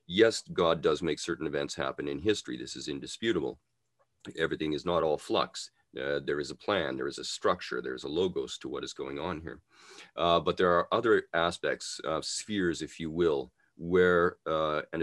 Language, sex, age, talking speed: English, male, 40-59, 200 wpm